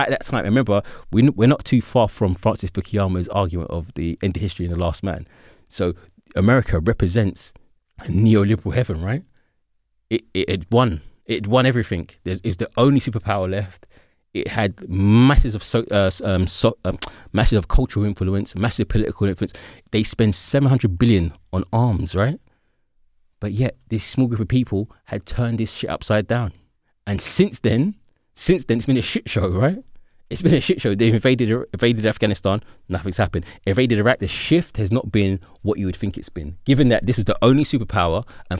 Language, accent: English, British